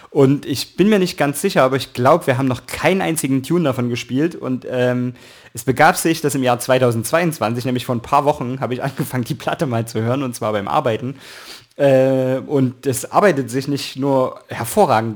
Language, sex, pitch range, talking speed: German, male, 125-145 Hz, 205 wpm